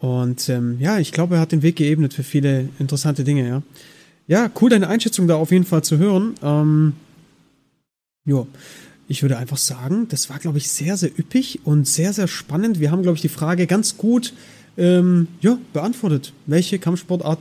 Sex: male